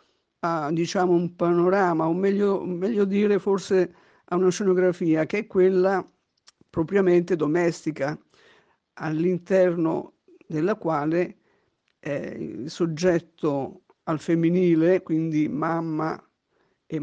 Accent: native